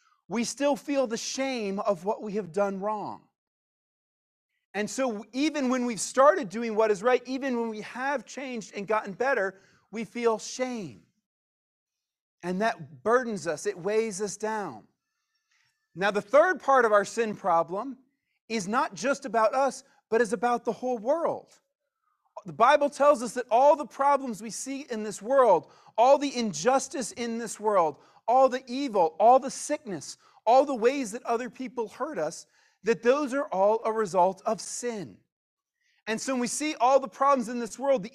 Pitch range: 210-265 Hz